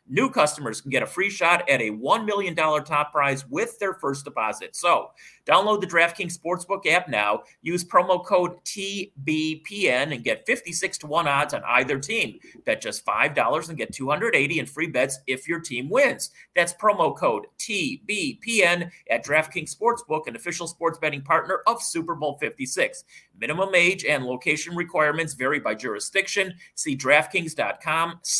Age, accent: 30-49, American